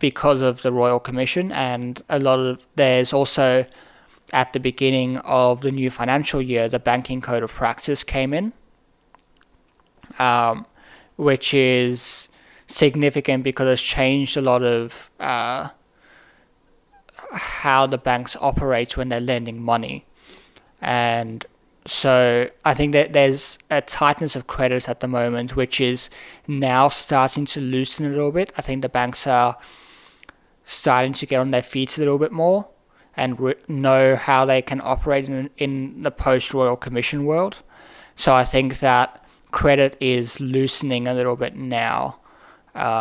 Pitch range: 125-140 Hz